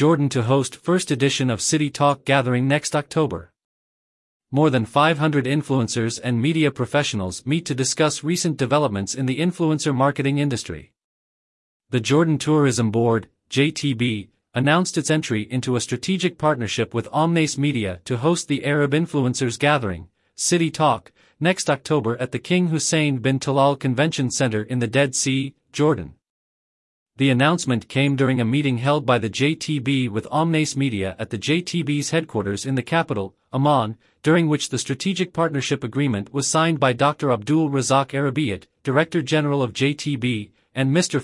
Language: English